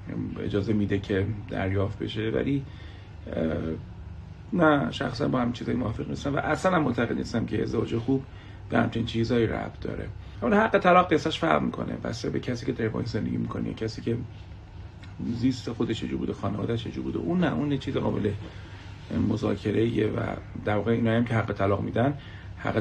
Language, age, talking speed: Persian, 30-49, 170 wpm